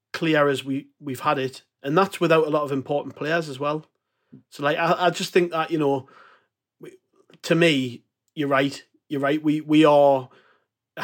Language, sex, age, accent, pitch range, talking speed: English, male, 30-49, British, 135-160 Hz, 195 wpm